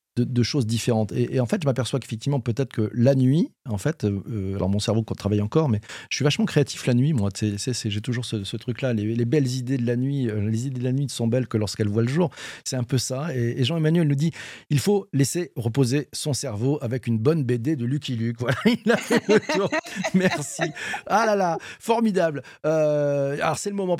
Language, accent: French, French